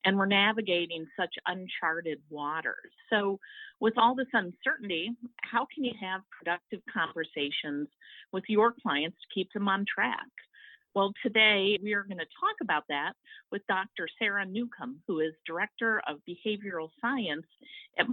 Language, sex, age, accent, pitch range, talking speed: English, female, 50-69, American, 155-215 Hz, 145 wpm